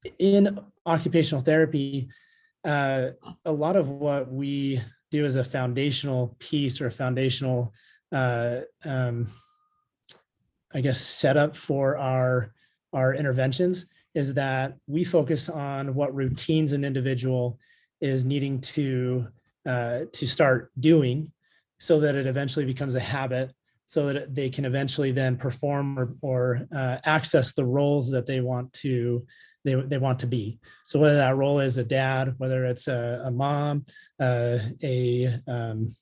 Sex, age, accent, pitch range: male, 30-49, American, 130-155 Hz